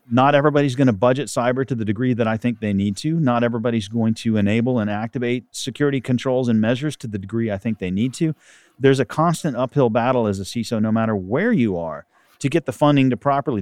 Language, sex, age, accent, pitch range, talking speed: English, male, 40-59, American, 105-130 Hz, 235 wpm